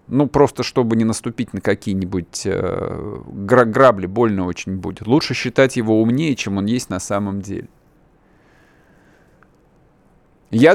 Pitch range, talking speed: 110-140 Hz, 125 wpm